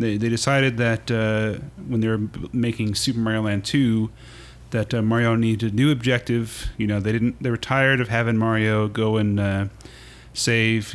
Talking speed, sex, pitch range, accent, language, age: 180 wpm, male, 100-120 Hz, American, English, 30-49